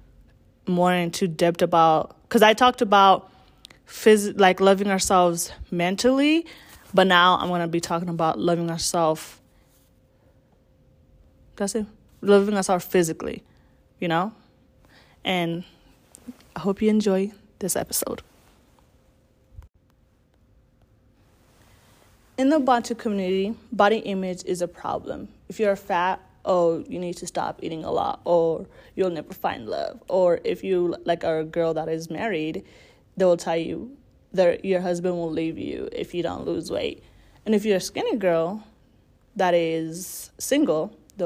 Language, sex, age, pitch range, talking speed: English, female, 20-39, 165-200 Hz, 145 wpm